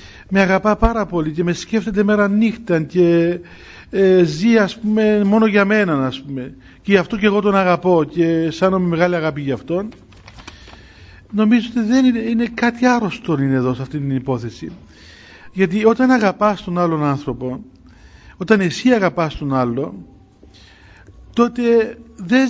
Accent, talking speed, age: native, 155 wpm, 50-69